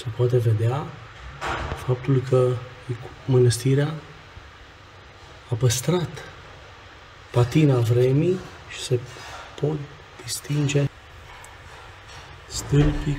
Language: Romanian